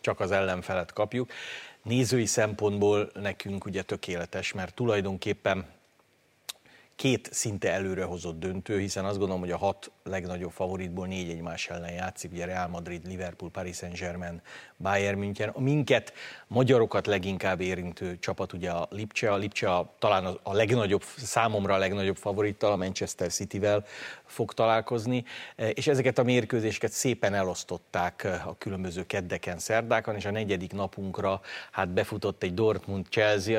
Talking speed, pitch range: 140 wpm, 95-115 Hz